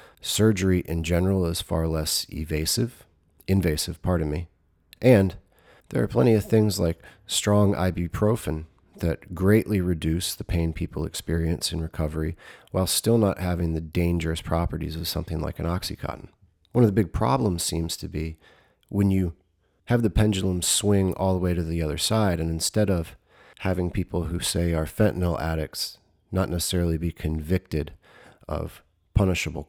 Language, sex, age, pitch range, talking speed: English, male, 30-49, 80-95 Hz, 155 wpm